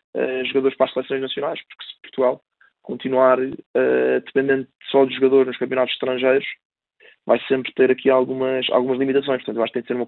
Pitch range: 125-135 Hz